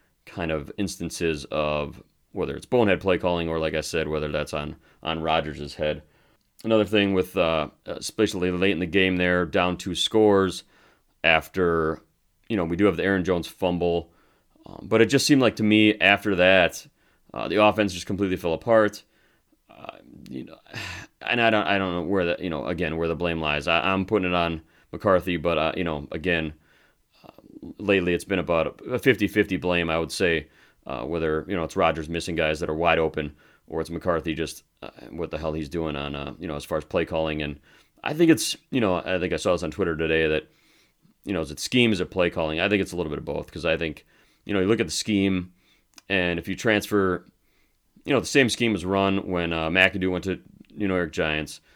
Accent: American